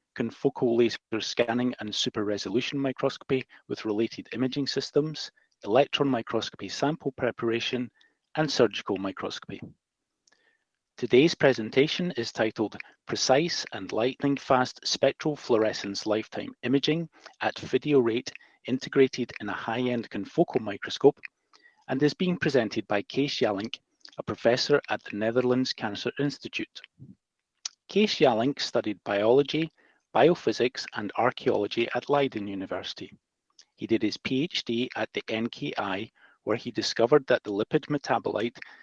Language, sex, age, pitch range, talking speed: English, male, 40-59, 115-145 Hz, 115 wpm